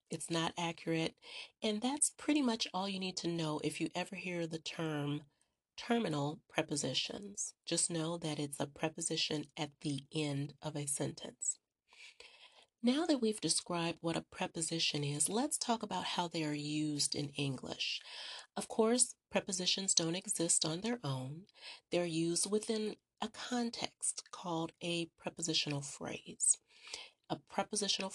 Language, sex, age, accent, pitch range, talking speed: English, female, 30-49, American, 155-200 Hz, 145 wpm